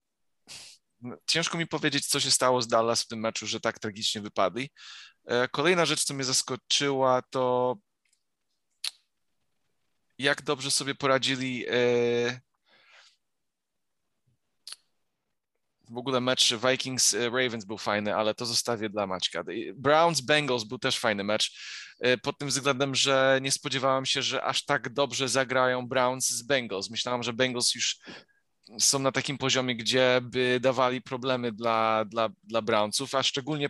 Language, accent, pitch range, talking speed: Polish, native, 125-140 Hz, 130 wpm